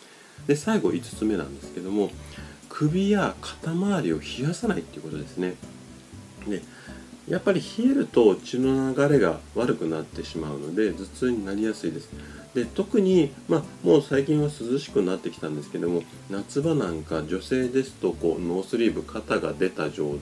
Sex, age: male, 30-49